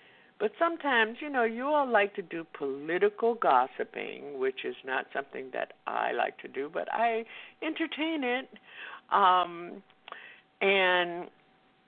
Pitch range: 140-220 Hz